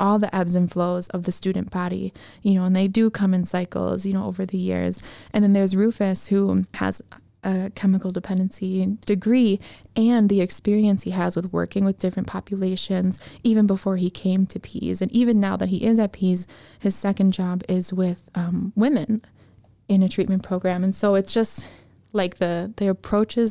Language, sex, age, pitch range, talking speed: English, female, 20-39, 175-200 Hz, 190 wpm